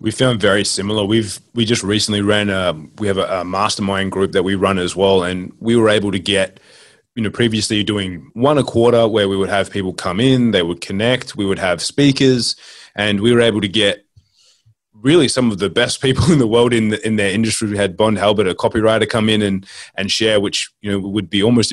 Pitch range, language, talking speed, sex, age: 95-110 Hz, English, 235 wpm, male, 20-39